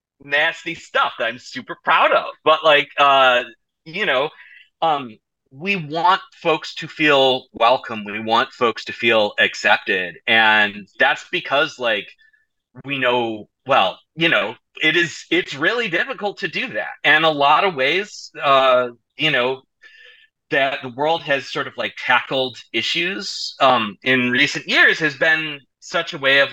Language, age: English, 30-49